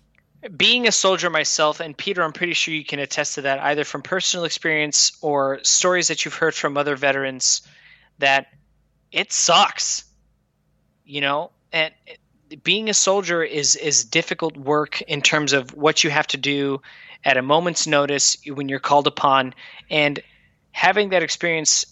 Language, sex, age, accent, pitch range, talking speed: English, male, 20-39, American, 135-165 Hz, 160 wpm